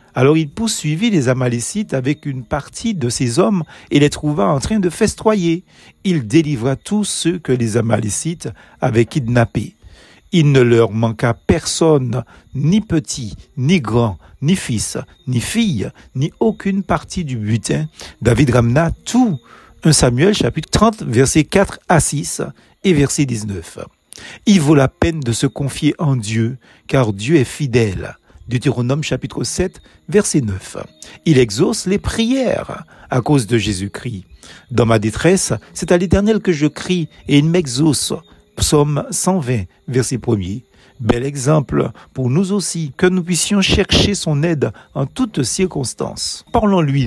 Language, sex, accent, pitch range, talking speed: French, male, French, 120-170 Hz, 150 wpm